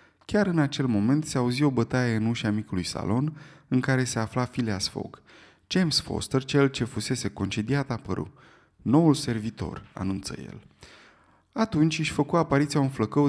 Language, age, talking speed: Romanian, 30-49, 160 wpm